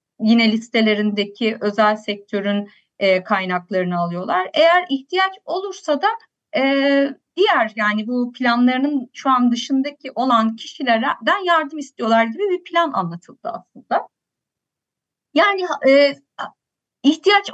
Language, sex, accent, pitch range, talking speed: Turkish, female, native, 225-310 Hz, 110 wpm